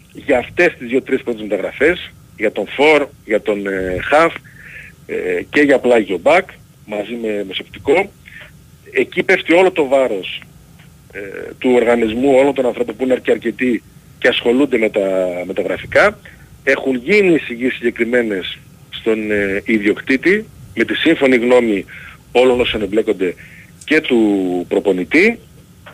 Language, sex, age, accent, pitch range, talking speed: Greek, male, 40-59, native, 110-150 Hz, 130 wpm